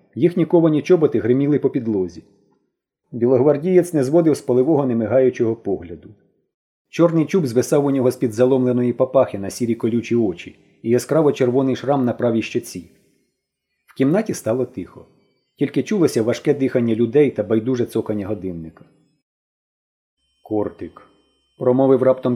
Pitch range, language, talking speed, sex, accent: 115-155 Hz, Ukrainian, 130 wpm, male, native